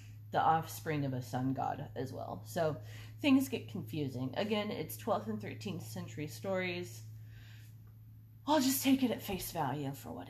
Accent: American